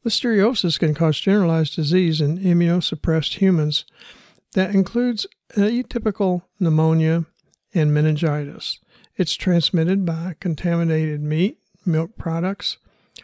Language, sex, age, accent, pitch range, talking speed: English, male, 60-79, American, 160-190 Hz, 95 wpm